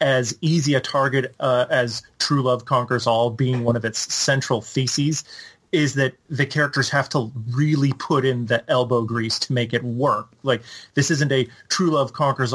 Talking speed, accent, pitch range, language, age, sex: 185 wpm, American, 125-155 Hz, English, 30-49, male